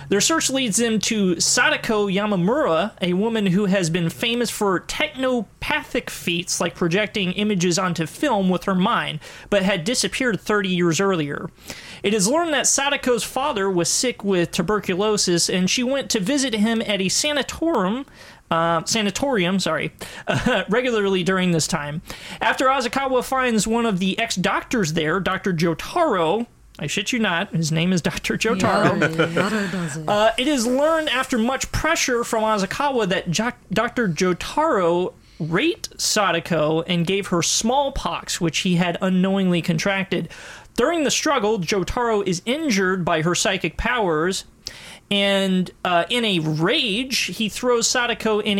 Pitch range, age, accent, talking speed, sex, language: 175-235 Hz, 30-49, American, 145 wpm, male, English